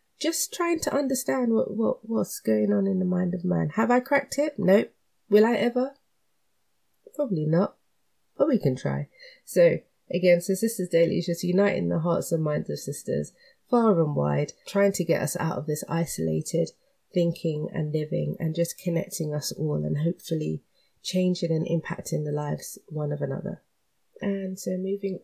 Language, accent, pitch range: English, British, 150-195 Hz